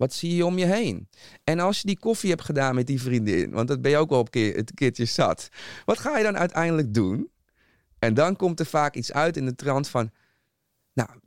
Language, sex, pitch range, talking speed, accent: Dutch, male, 120-160 Hz, 230 wpm, Dutch